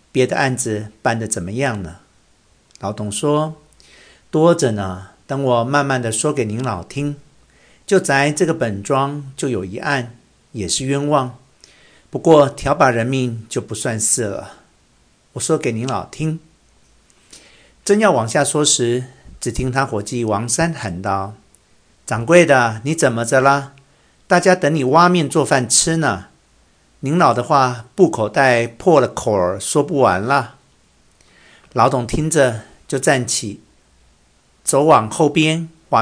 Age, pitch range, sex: 50-69, 110-145 Hz, male